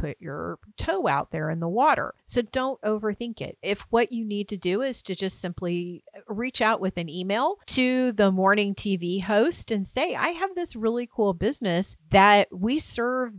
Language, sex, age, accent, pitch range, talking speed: English, female, 40-59, American, 170-230 Hz, 195 wpm